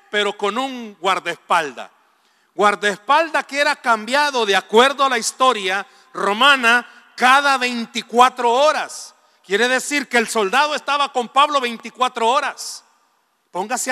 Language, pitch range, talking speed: Spanish, 160-245 Hz, 120 wpm